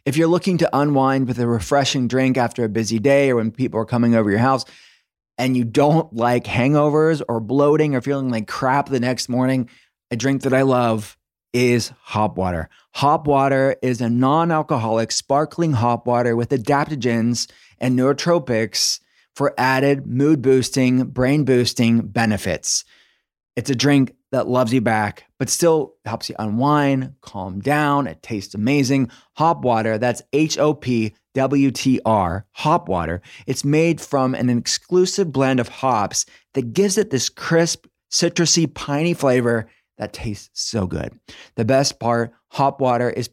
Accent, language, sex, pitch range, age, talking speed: American, English, male, 115-140 Hz, 20-39, 155 wpm